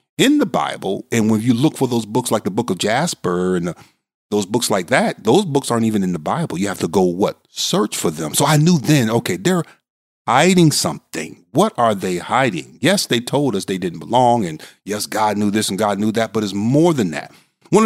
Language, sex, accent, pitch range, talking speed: English, male, American, 105-170 Hz, 230 wpm